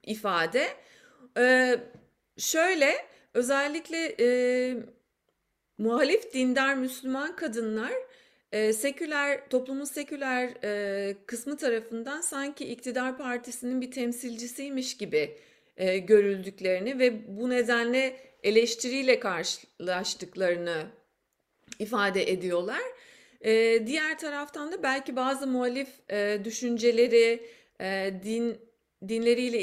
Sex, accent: female, native